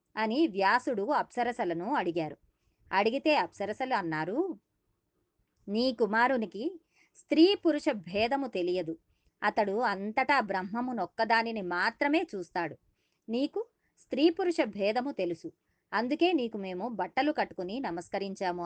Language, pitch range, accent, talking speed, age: Telugu, 185-280 Hz, native, 85 wpm, 20-39